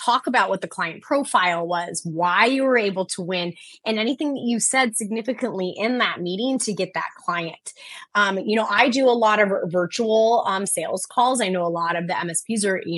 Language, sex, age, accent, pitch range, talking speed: English, female, 20-39, American, 185-245 Hz, 215 wpm